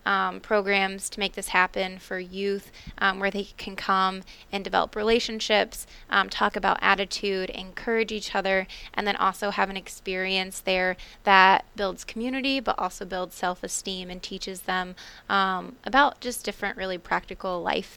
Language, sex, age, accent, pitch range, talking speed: English, female, 20-39, American, 185-205 Hz, 155 wpm